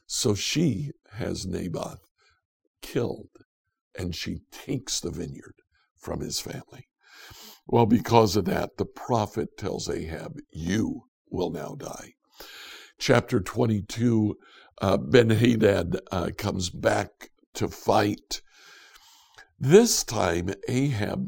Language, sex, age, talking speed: English, male, 60-79, 100 wpm